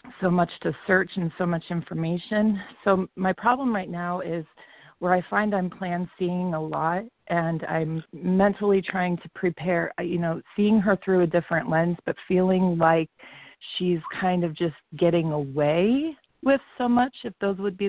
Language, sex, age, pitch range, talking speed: English, female, 30-49, 160-185 Hz, 175 wpm